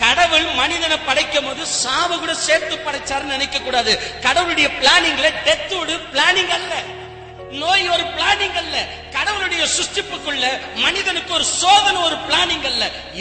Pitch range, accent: 190-315 Hz, native